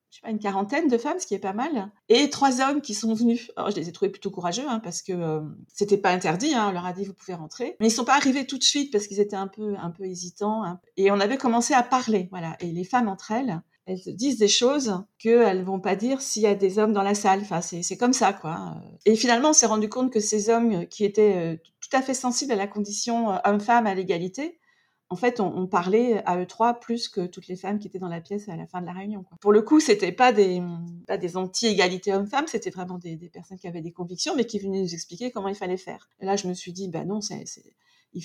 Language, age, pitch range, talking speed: French, 40-59, 180-230 Hz, 280 wpm